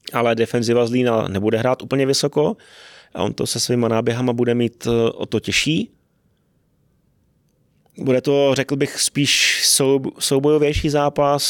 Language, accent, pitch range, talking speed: Czech, native, 115-130 Hz, 130 wpm